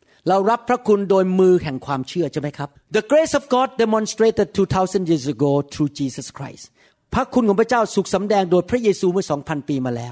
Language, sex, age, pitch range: Thai, male, 50-69, 160-235 Hz